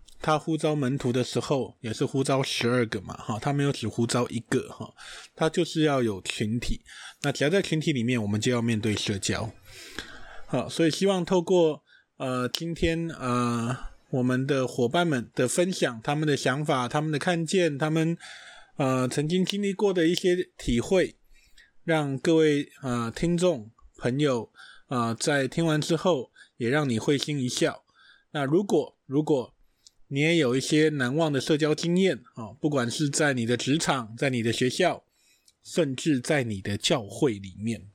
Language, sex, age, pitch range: Chinese, male, 20-39, 120-160 Hz